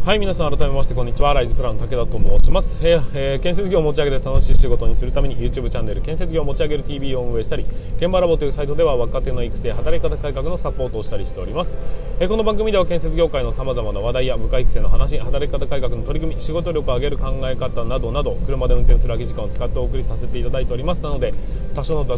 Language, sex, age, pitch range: Japanese, male, 20-39, 125-165 Hz